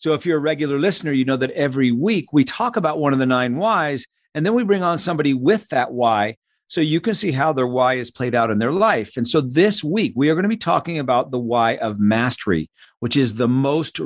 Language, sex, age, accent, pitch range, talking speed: English, male, 50-69, American, 130-170 Hz, 255 wpm